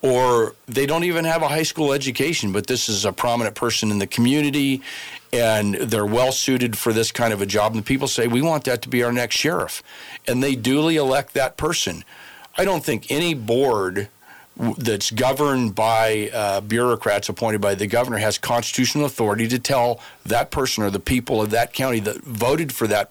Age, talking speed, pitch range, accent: 50-69, 195 wpm, 110-135 Hz, American